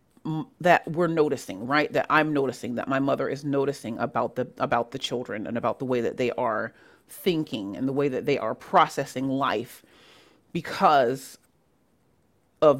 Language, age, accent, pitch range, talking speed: English, 30-49, American, 145-205 Hz, 165 wpm